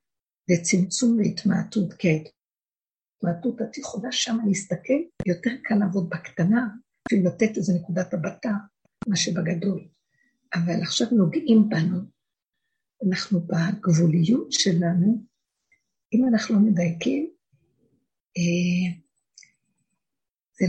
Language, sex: Hebrew, female